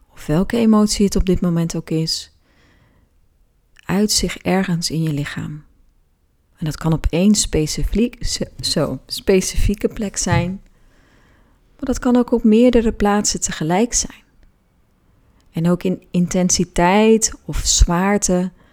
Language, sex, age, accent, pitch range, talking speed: Dutch, female, 30-49, Dutch, 150-205 Hz, 120 wpm